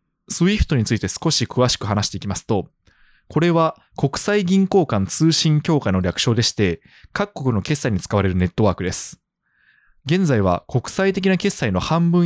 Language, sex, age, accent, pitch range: Japanese, male, 20-39, native, 100-165 Hz